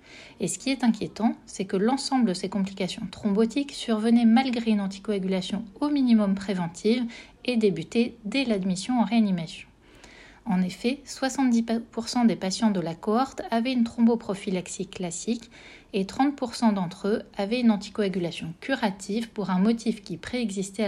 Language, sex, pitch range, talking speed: French, female, 190-235 Hz, 145 wpm